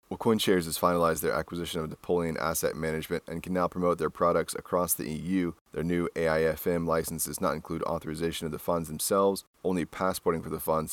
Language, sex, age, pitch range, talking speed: English, male, 30-49, 80-90 Hz, 200 wpm